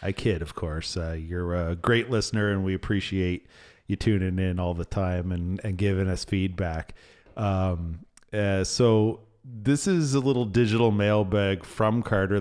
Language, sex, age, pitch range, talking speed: English, male, 40-59, 90-105 Hz, 165 wpm